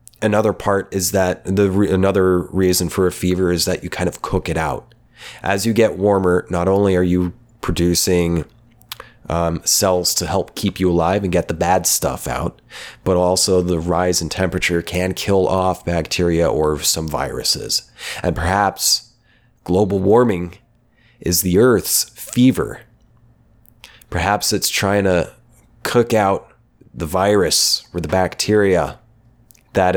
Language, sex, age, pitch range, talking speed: English, male, 30-49, 90-115 Hz, 145 wpm